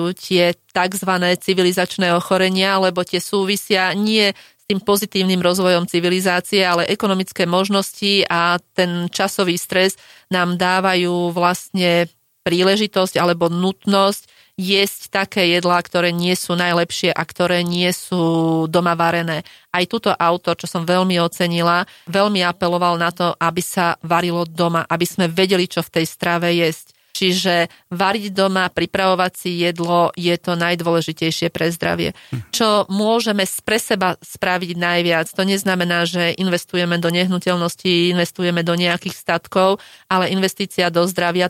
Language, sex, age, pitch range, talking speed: Slovak, female, 30-49, 175-190 Hz, 135 wpm